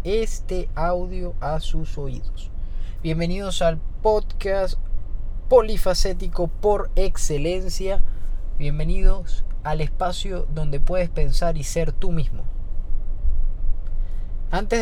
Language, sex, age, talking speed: Spanish, male, 20-39, 90 wpm